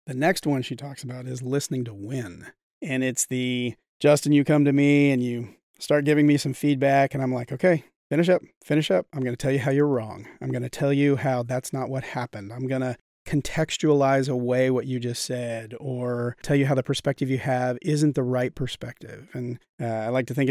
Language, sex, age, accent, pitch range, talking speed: English, male, 30-49, American, 125-145 Hz, 220 wpm